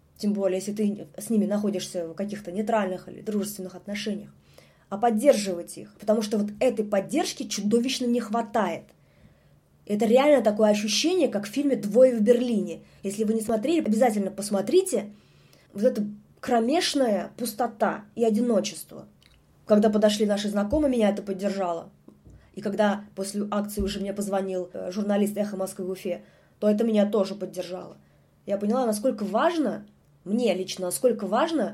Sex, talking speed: female, 150 wpm